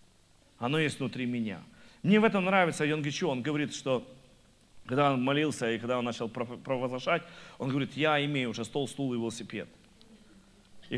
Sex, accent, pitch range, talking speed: male, native, 120-195 Hz, 165 wpm